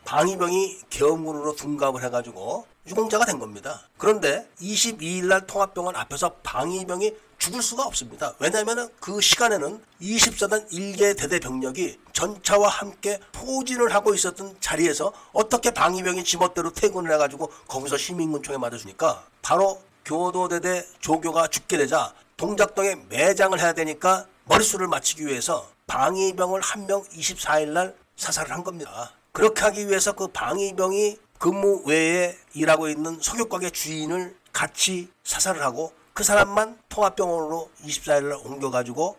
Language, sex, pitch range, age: Korean, male, 155-200 Hz, 40-59